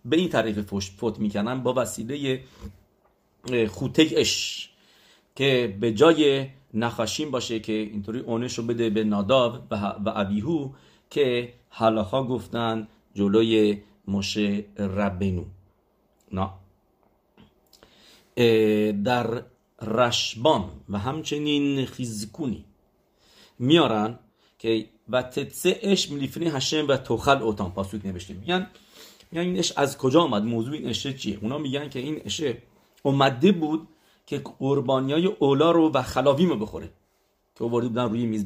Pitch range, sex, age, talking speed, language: 110-155 Hz, male, 50-69, 115 wpm, English